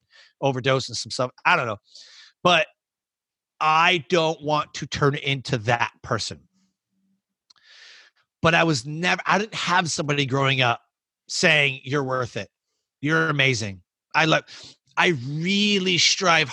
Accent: American